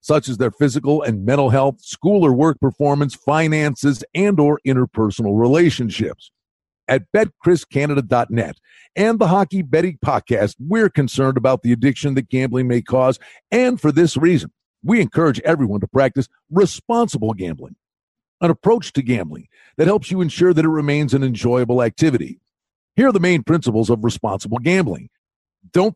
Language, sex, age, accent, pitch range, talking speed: English, male, 50-69, American, 120-175 Hz, 155 wpm